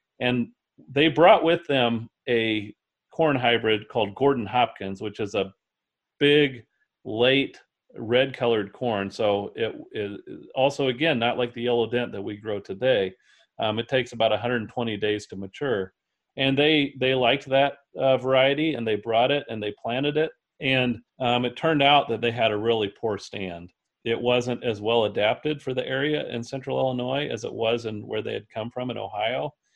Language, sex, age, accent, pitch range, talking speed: English, male, 40-59, American, 110-135 Hz, 180 wpm